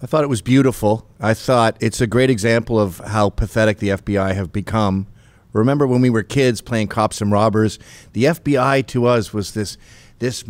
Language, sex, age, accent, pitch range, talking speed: English, male, 50-69, American, 110-135 Hz, 195 wpm